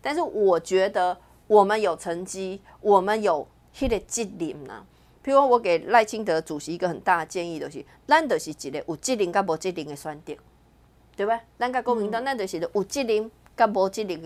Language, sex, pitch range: Chinese, female, 180-245 Hz